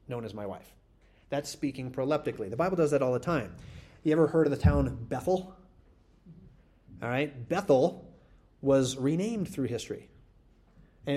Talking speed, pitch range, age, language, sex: 155 wpm, 120-150 Hz, 30-49, English, male